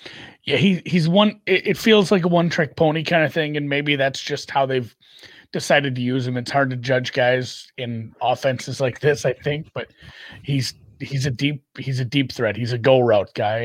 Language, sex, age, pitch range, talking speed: English, male, 30-49, 115-150 Hz, 215 wpm